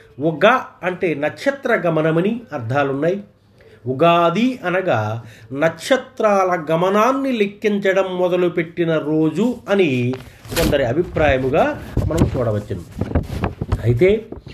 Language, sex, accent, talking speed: Telugu, male, native, 75 wpm